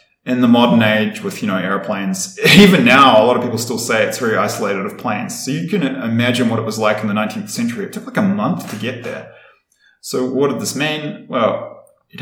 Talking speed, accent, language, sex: 235 wpm, Australian, English, male